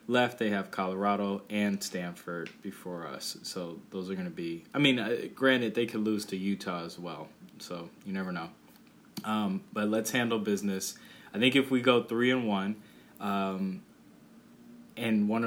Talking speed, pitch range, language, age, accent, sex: 175 wpm, 95-115 Hz, English, 20-39, American, male